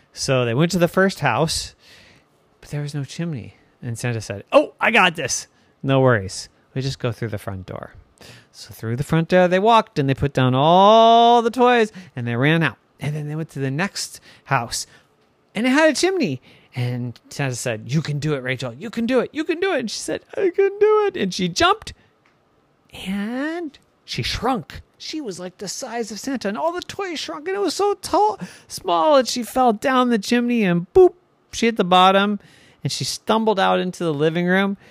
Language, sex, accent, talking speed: English, male, American, 215 wpm